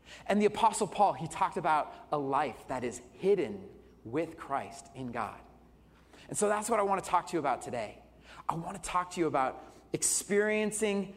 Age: 30-49